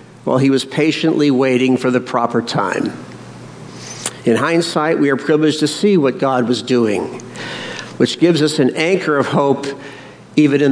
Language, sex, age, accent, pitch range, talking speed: English, male, 60-79, American, 130-160 Hz, 160 wpm